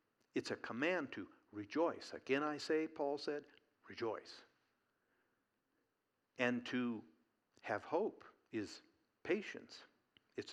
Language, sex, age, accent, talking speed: English, male, 60-79, American, 105 wpm